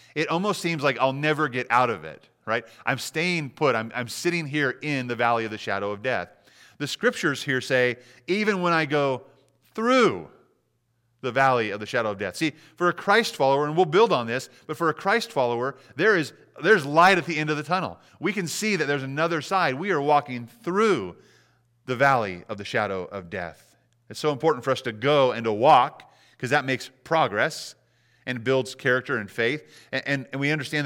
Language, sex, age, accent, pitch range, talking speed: English, male, 30-49, American, 120-150 Hz, 210 wpm